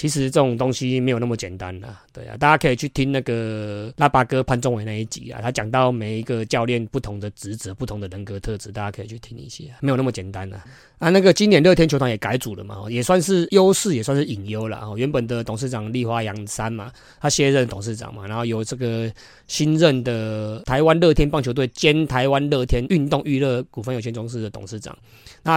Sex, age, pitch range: male, 20-39, 110-135 Hz